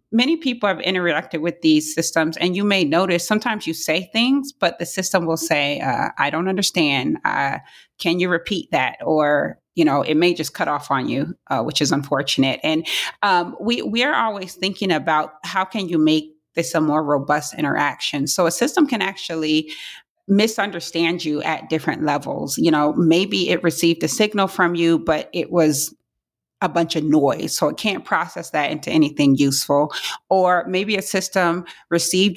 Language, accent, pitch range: English, American, 155-190 Hz